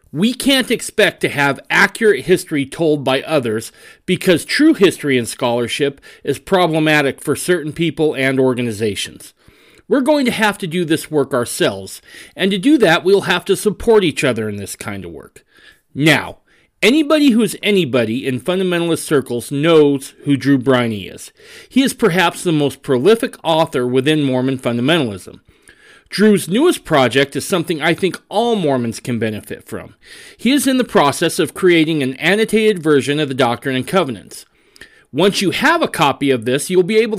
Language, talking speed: English, 170 wpm